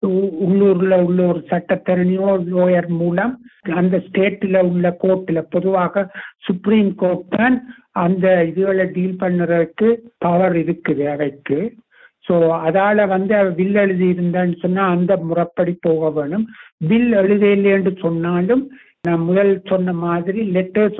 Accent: native